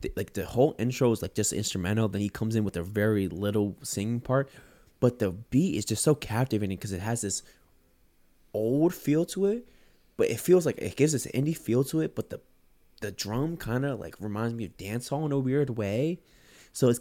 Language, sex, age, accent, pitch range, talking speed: English, male, 20-39, American, 95-125 Hz, 220 wpm